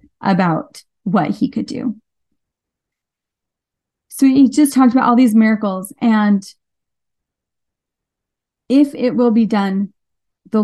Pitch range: 200-235 Hz